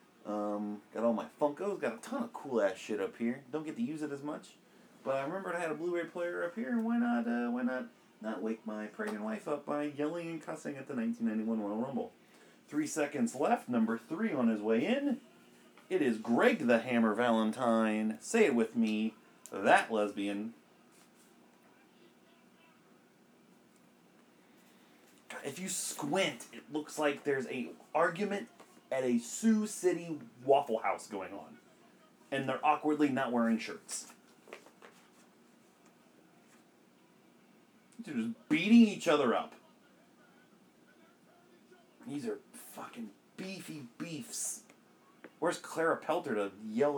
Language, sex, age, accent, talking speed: English, male, 30-49, American, 145 wpm